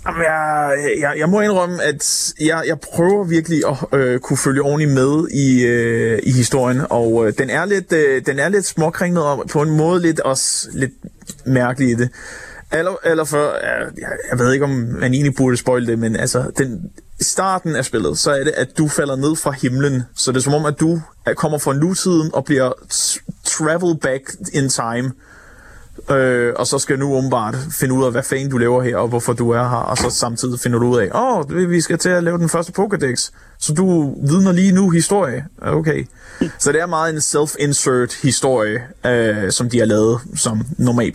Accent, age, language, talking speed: native, 30-49, Danish, 205 wpm